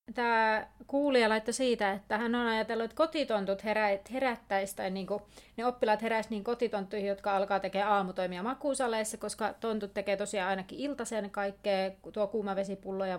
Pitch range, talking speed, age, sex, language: 200-250 Hz, 140 wpm, 30-49, female, Finnish